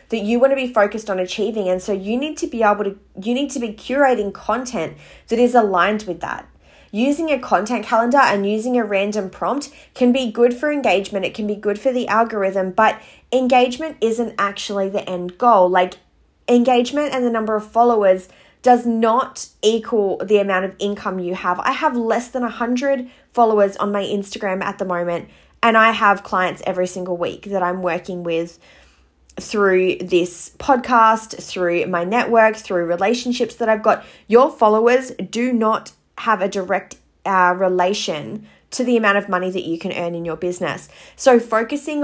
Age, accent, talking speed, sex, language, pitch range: 20-39, Australian, 185 wpm, female, English, 190-245 Hz